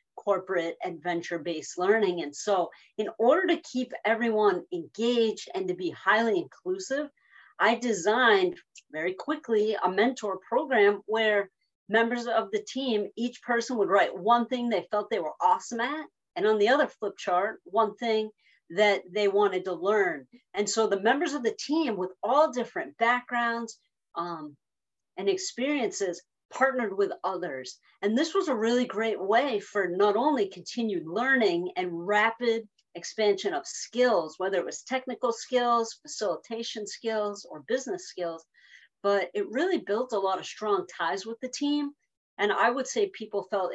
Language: English